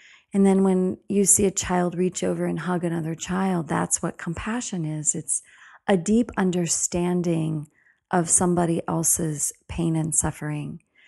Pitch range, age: 165-200 Hz, 40-59